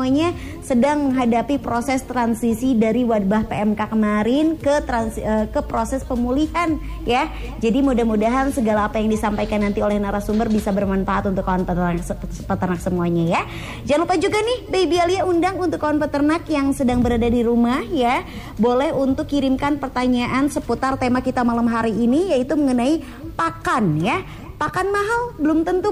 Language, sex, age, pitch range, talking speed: Indonesian, male, 20-39, 220-290 Hz, 150 wpm